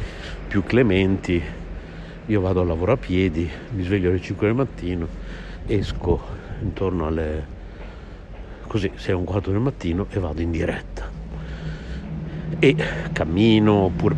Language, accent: Italian, native